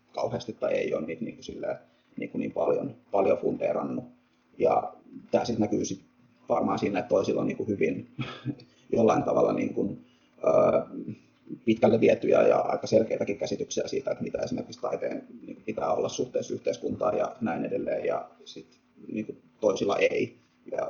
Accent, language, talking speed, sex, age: native, Finnish, 145 wpm, male, 30-49